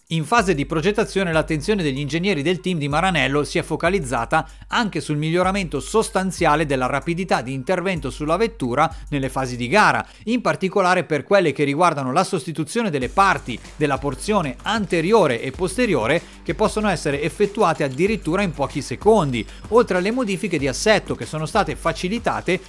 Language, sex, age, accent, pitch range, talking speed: Italian, male, 40-59, native, 145-200 Hz, 160 wpm